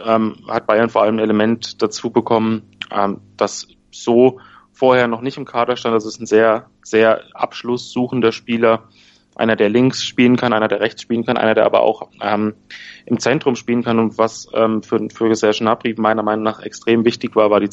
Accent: German